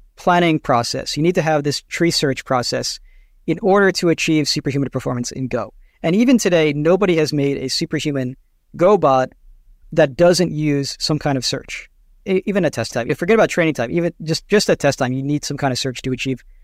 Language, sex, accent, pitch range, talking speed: English, male, American, 140-175 Hz, 210 wpm